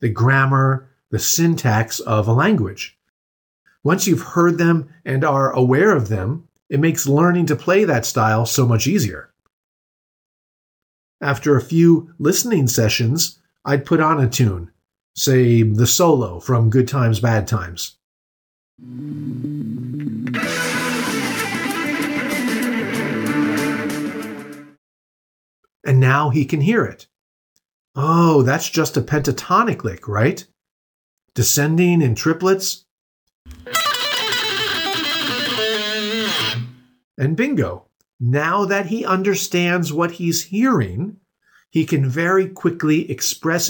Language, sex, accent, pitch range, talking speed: English, male, American, 120-170 Hz, 100 wpm